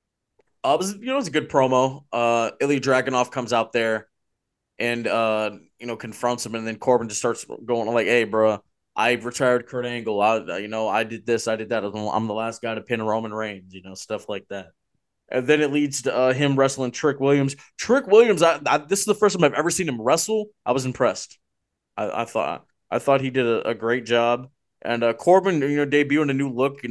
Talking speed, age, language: 235 wpm, 20-39, English